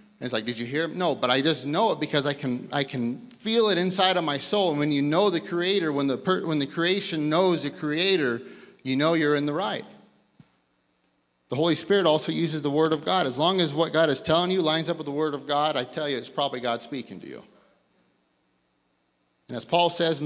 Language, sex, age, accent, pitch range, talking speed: English, male, 30-49, American, 125-165 Hz, 245 wpm